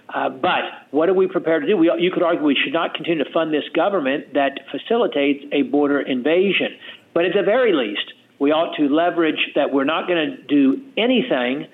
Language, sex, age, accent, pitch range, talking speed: English, male, 50-69, American, 145-205 Hz, 210 wpm